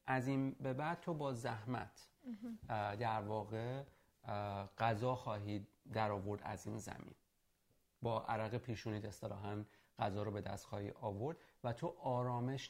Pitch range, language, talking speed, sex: 105-140 Hz, Persian, 140 wpm, male